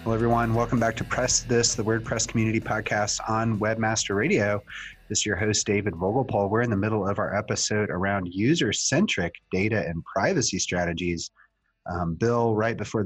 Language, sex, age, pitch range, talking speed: English, male, 30-49, 95-115 Hz, 170 wpm